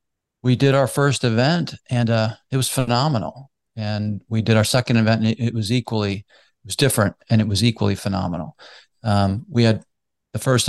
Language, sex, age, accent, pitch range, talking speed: English, male, 40-59, American, 110-125 Hz, 185 wpm